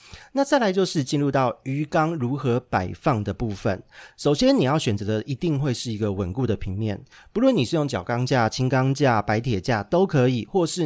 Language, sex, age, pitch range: Chinese, male, 30-49, 110-150 Hz